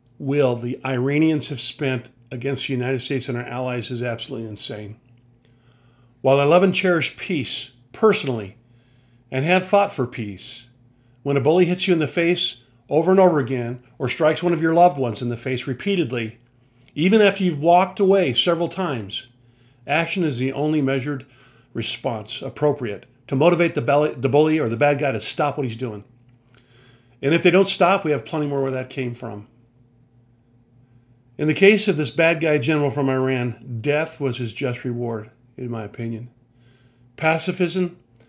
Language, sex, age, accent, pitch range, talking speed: English, male, 40-59, American, 120-150 Hz, 170 wpm